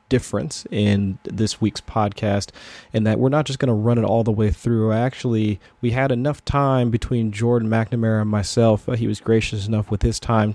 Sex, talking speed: male, 200 wpm